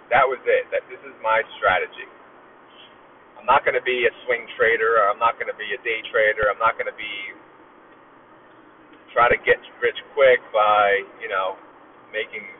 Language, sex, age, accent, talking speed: English, male, 30-49, American, 185 wpm